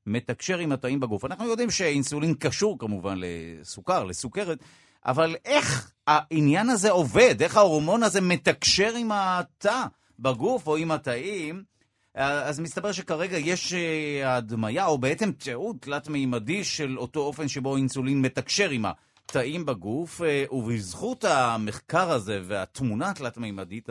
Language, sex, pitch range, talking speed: Hebrew, male, 130-175 Hz, 130 wpm